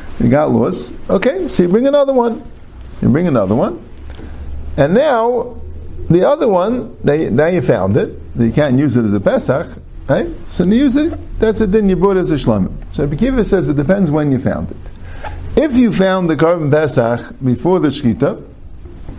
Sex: male